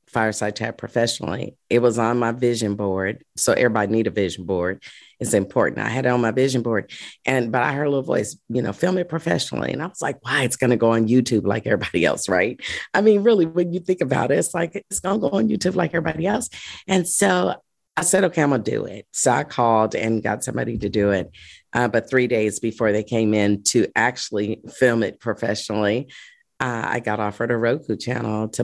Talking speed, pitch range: 225 wpm, 115-150 Hz